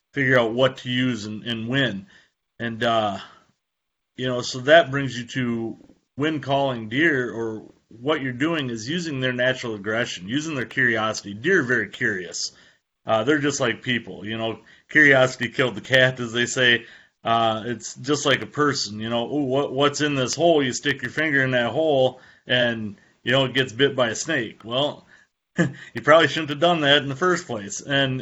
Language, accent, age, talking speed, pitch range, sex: English, American, 30-49, 190 wpm, 120-145 Hz, male